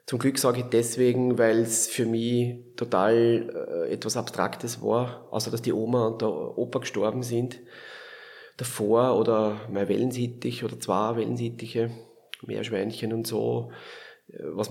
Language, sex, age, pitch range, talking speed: German, male, 30-49, 110-125 Hz, 140 wpm